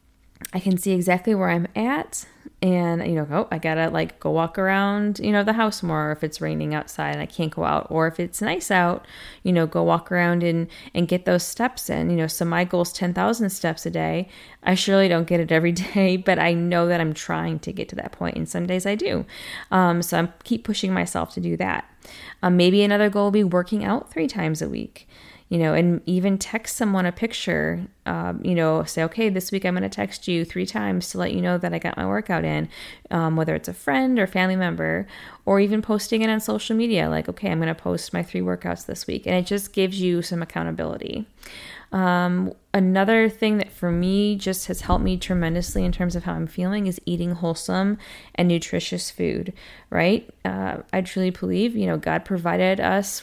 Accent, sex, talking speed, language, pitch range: American, female, 225 wpm, English, 160-195 Hz